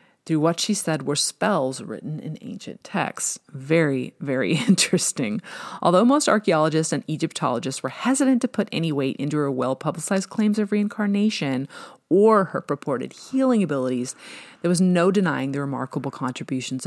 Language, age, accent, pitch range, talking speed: English, 30-49, American, 140-195 Hz, 150 wpm